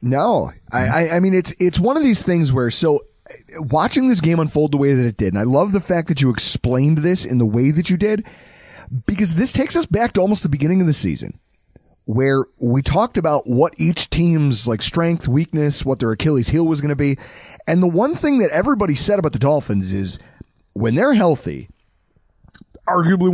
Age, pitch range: 30-49, 120-175 Hz